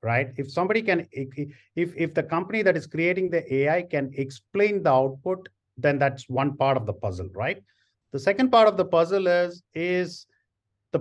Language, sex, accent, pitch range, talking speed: English, male, Indian, 125-170 Hz, 185 wpm